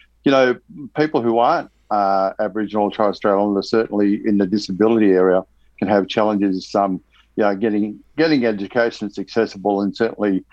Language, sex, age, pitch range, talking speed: English, male, 60-79, 100-115 Hz, 165 wpm